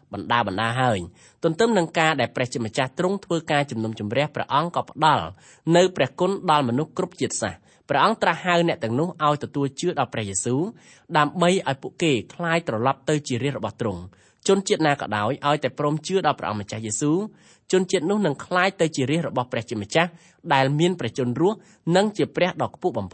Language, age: English, 20-39